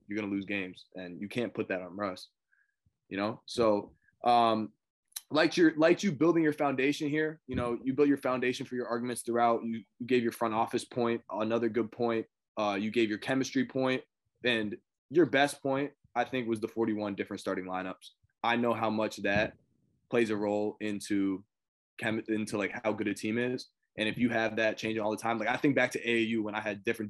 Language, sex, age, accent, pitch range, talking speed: English, male, 20-39, American, 105-125 Hz, 215 wpm